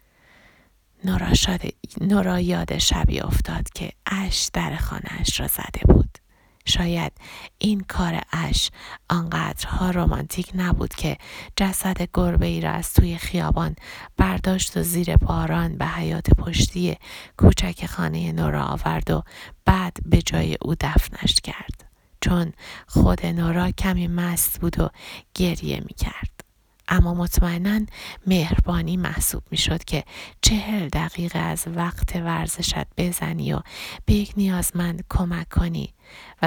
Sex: female